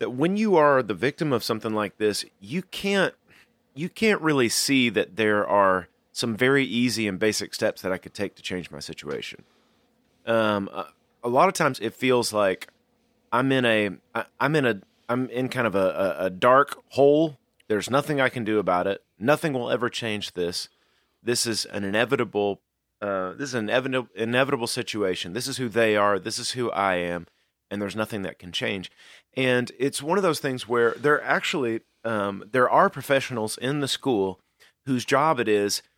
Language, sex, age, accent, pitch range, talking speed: English, male, 30-49, American, 105-140 Hz, 195 wpm